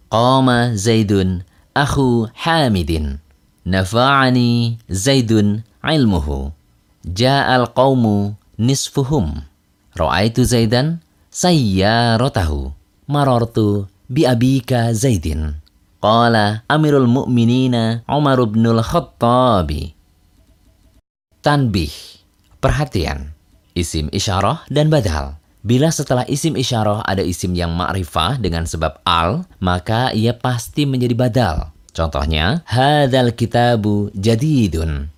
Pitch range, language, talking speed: 90-130 Hz, Indonesian, 70 wpm